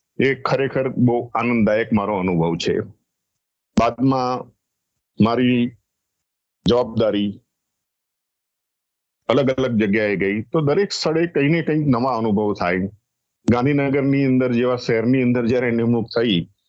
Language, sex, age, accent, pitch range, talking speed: English, male, 50-69, Indian, 110-130 Hz, 135 wpm